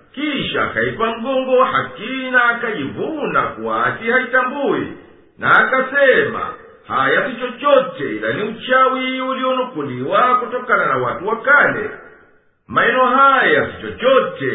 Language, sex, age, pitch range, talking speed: Swahili, male, 50-69, 250-275 Hz, 105 wpm